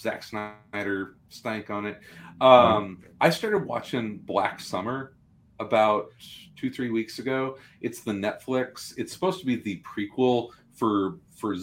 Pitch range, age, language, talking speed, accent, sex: 95-115 Hz, 40-59, English, 140 wpm, American, male